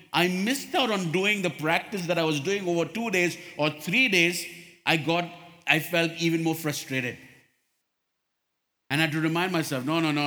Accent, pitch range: Indian, 150-200 Hz